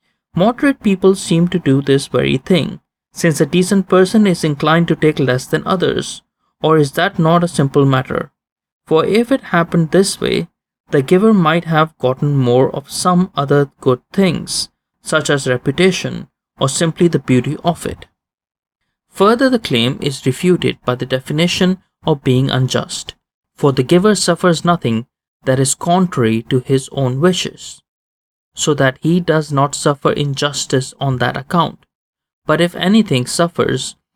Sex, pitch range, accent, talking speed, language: male, 140-180 Hz, Indian, 155 wpm, English